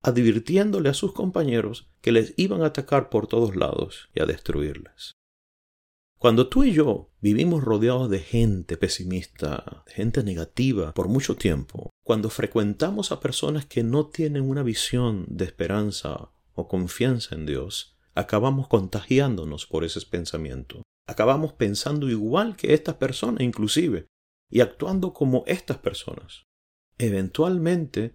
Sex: male